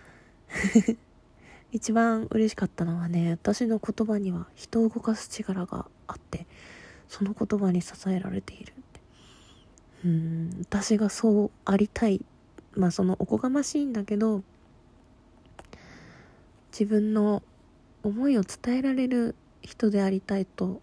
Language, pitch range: Japanese, 190-225 Hz